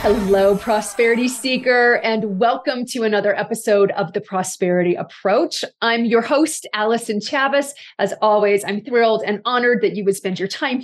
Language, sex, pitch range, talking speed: English, female, 195-255 Hz, 160 wpm